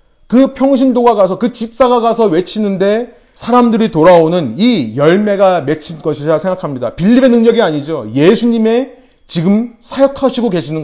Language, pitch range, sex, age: Korean, 175-235 Hz, male, 30-49